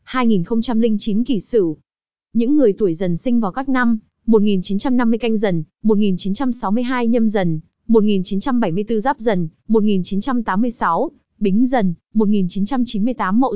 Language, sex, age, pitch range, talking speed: Vietnamese, female, 20-39, 200-245 Hz, 110 wpm